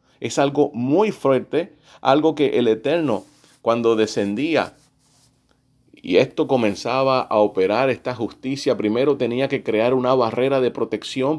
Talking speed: 130 wpm